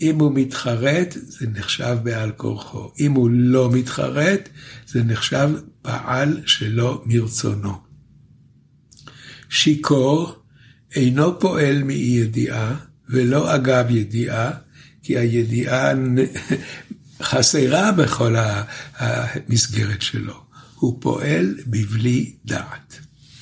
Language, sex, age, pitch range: Hebrew, male, 60-79, 120-145 Hz